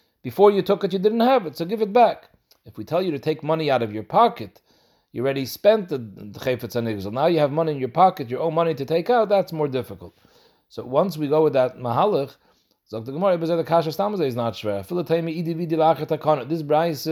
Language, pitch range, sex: English, 130-165 Hz, male